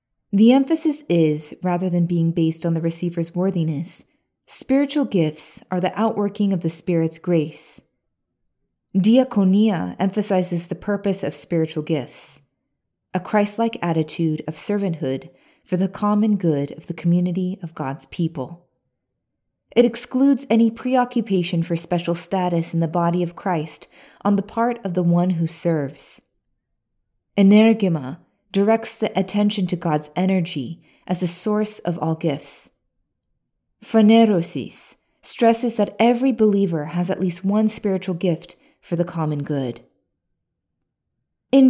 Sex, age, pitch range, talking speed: female, 20-39, 165-215 Hz, 130 wpm